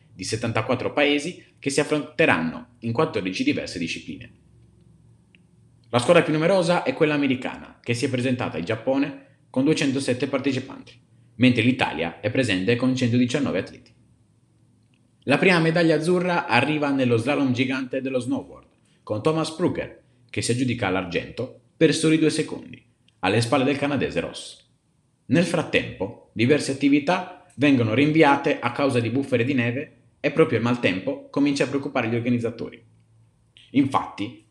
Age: 30-49